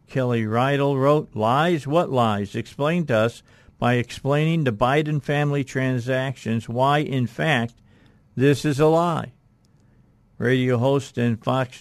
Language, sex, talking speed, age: English, male, 130 wpm, 50-69